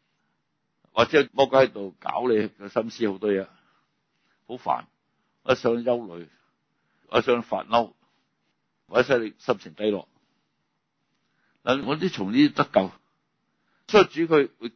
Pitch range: 100-135 Hz